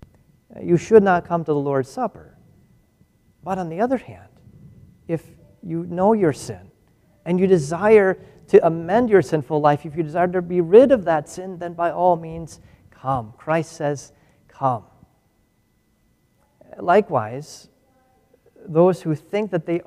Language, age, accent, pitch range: English, 40-59, American, 135-185 Hz